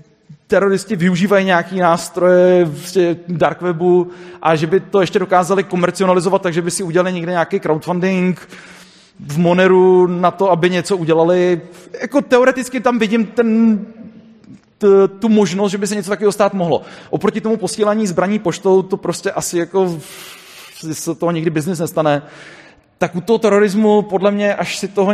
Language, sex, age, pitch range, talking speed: Czech, male, 30-49, 150-190 Hz, 155 wpm